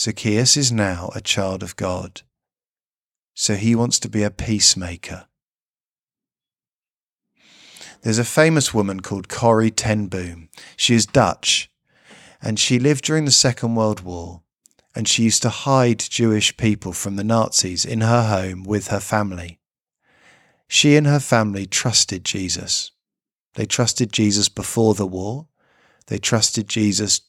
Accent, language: British, English